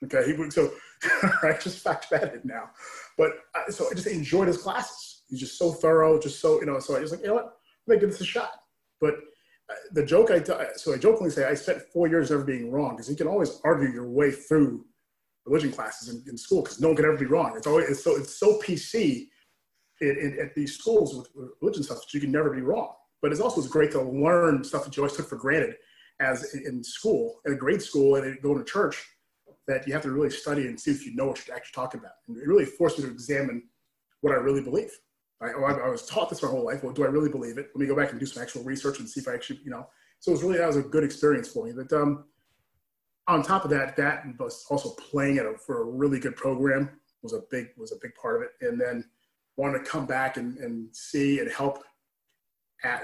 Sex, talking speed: male, 255 wpm